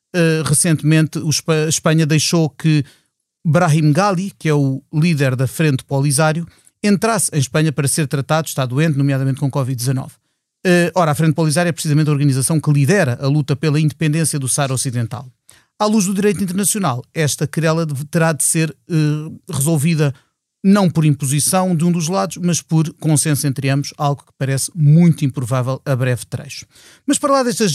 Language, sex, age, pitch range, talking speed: Portuguese, male, 30-49, 145-170 Hz, 165 wpm